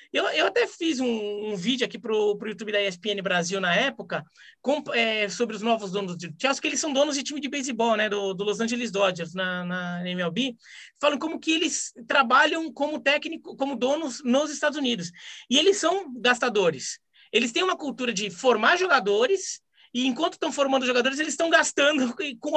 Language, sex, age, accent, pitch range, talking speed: Portuguese, male, 20-39, Brazilian, 225-300 Hz, 195 wpm